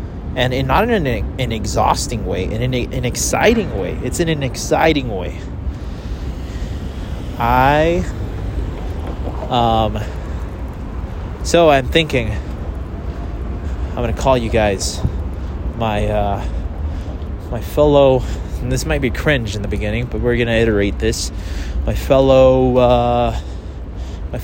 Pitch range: 80-125 Hz